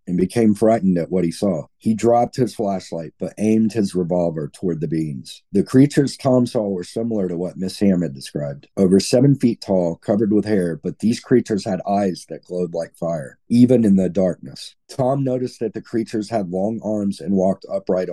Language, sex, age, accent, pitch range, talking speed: English, male, 40-59, American, 85-115 Hz, 200 wpm